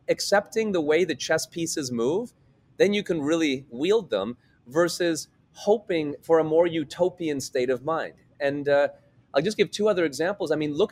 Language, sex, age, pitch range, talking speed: English, male, 30-49, 130-170 Hz, 180 wpm